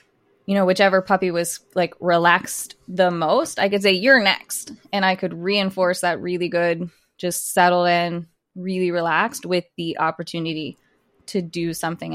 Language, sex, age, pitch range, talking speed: English, female, 20-39, 170-195 Hz, 160 wpm